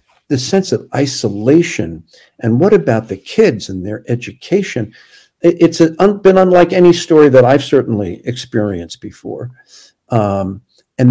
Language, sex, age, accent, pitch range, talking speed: English, male, 50-69, American, 110-150 Hz, 130 wpm